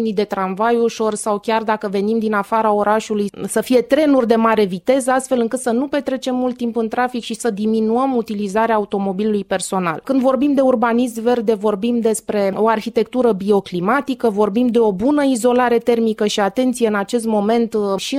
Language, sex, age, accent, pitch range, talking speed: Romanian, female, 20-39, native, 210-245 Hz, 175 wpm